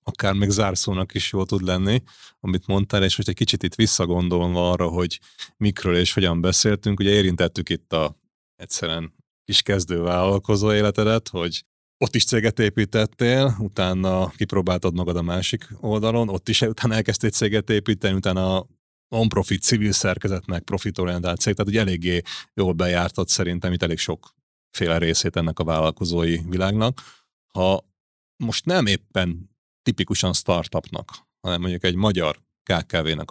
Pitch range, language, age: 85-105 Hz, Hungarian, 30-49